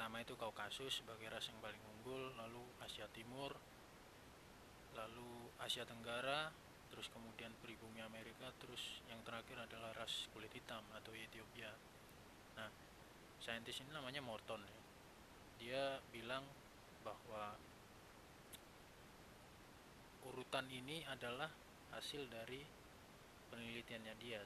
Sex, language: male, Indonesian